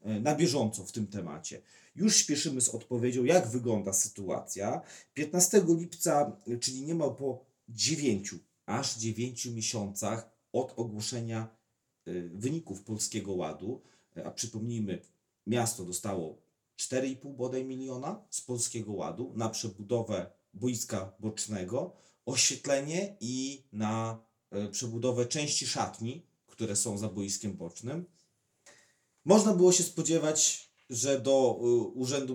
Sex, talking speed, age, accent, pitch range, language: male, 110 wpm, 40-59, native, 110-135 Hz, Polish